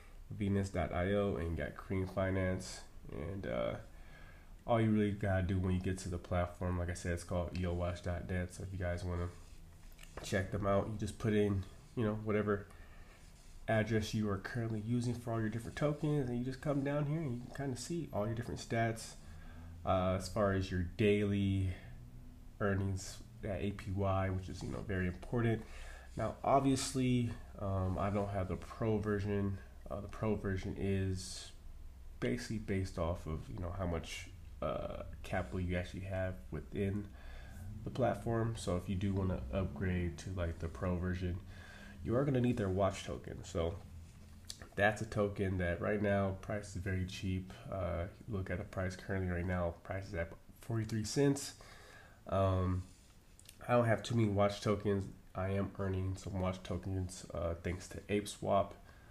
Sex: male